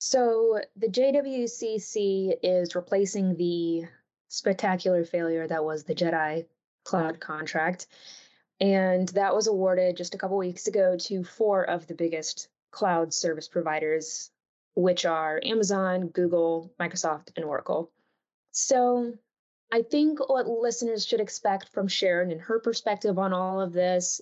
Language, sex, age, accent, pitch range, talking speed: English, female, 20-39, American, 175-210 Hz, 135 wpm